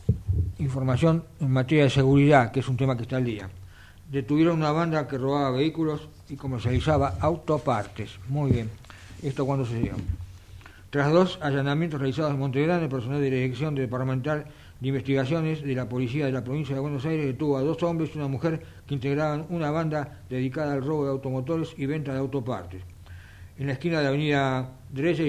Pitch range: 105-145 Hz